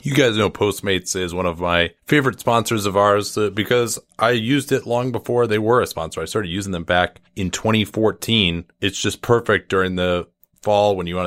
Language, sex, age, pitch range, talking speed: English, male, 30-49, 90-105 Hz, 200 wpm